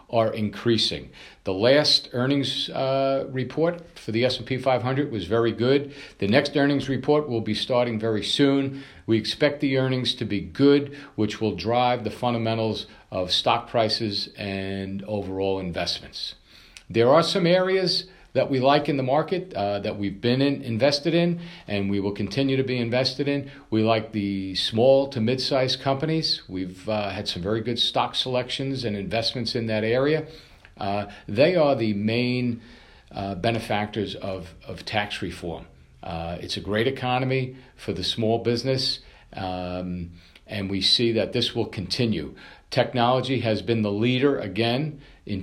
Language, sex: English, male